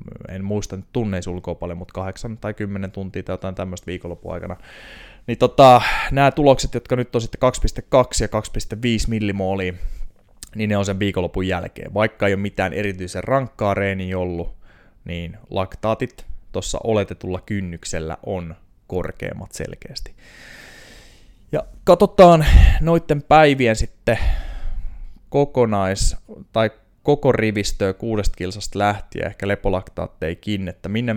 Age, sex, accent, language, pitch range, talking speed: 20-39, male, native, Finnish, 90-110 Hz, 125 wpm